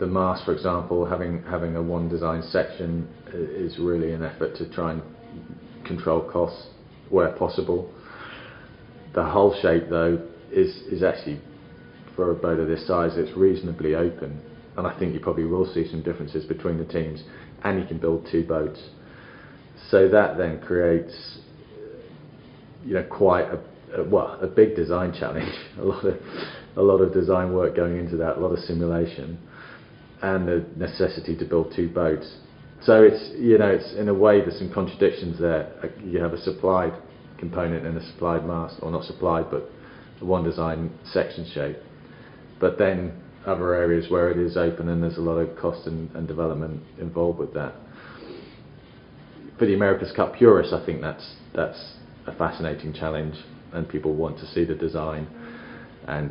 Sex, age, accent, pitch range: male, 30-49, British, 80-85 Hz